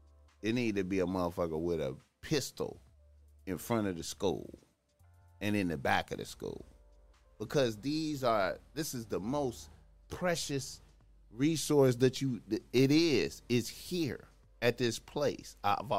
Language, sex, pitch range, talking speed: English, male, 85-130 Hz, 150 wpm